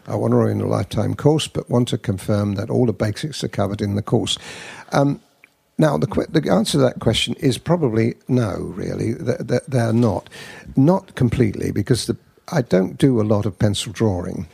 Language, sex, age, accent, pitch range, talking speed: English, male, 50-69, British, 105-135 Hz, 205 wpm